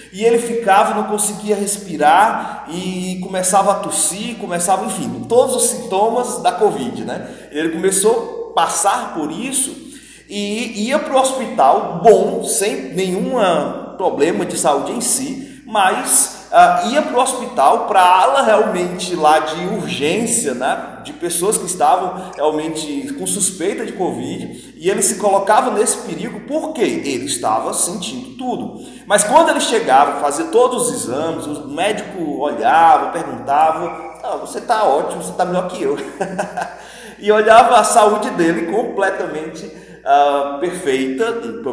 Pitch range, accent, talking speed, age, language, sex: 180-240 Hz, Brazilian, 140 wpm, 30-49, Portuguese, male